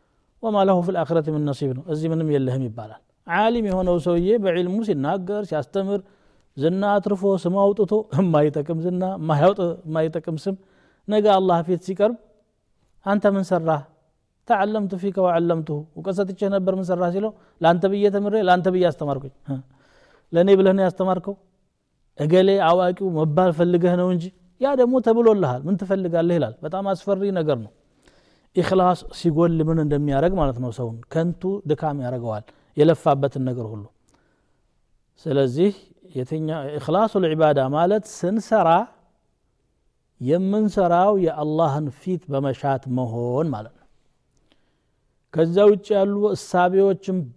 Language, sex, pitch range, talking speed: Amharic, male, 145-195 Hz, 90 wpm